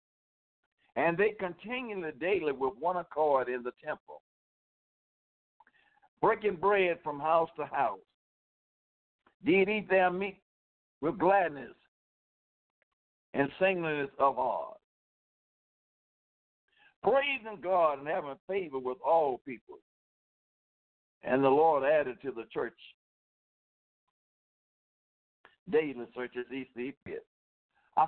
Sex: male